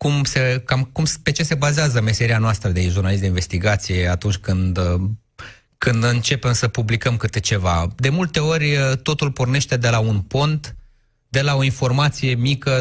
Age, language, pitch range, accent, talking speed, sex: 20-39, Romanian, 105-130 Hz, native, 170 wpm, male